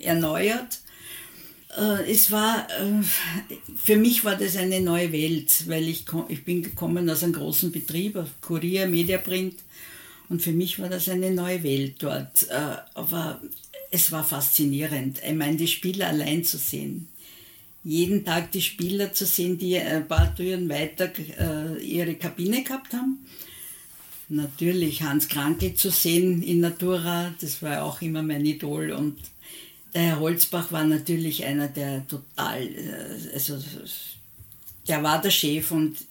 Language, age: German, 60-79